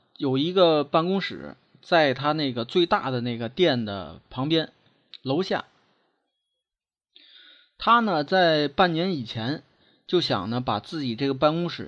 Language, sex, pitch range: Chinese, male, 125-180 Hz